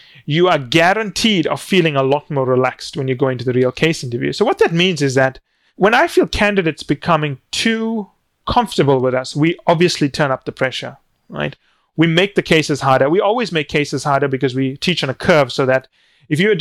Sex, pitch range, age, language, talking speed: male, 135-175 Hz, 30-49, English, 215 wpm